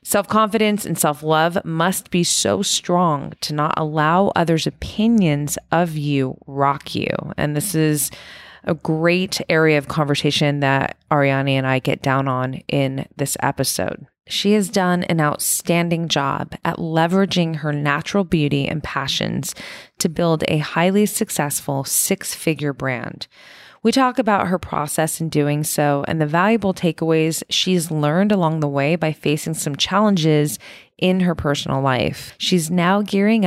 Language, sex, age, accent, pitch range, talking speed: English, female, 20-39, American, 145-185 Hz, 145 wpm